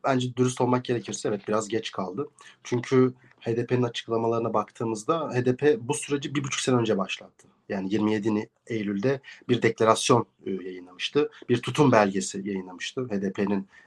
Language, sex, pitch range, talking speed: Turkish, male, 120-150 Hz, 135 wpm